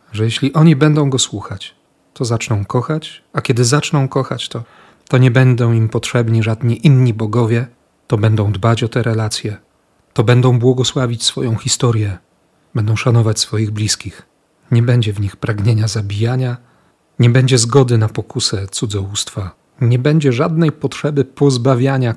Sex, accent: male, native